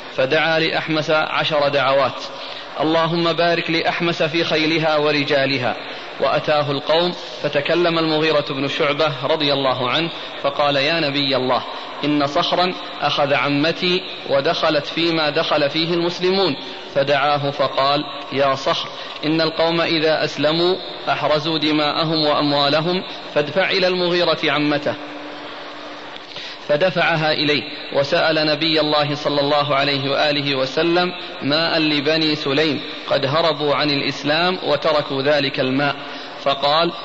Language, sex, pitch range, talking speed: Arabic, male, 145-165 Hz, 110 wpm